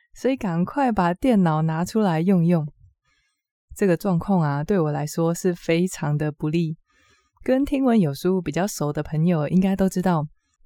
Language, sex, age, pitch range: Chinese, female, 20-39, 160-230 Hz